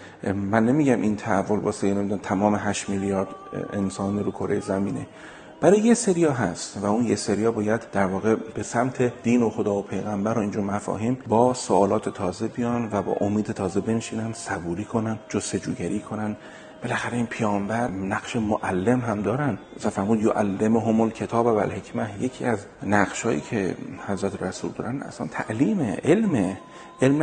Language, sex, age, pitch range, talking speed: Persian, male, 40-59, 100-110 Hz, 160 wpm